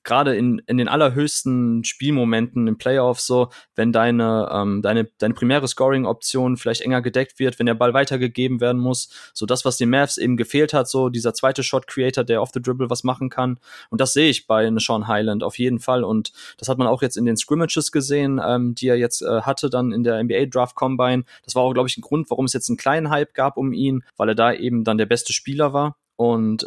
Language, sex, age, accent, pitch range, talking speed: German, male, 20-39, German, 120-135 Hz, 235 wpm